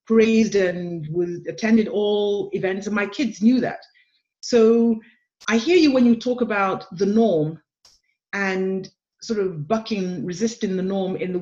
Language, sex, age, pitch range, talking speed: English, female, 40-59, 190-245 Hz, 150 wpm